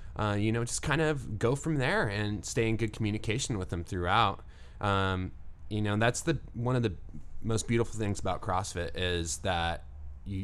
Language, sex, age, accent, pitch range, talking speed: English, male, 20-39, American, 85-110 Hz, 190 wpm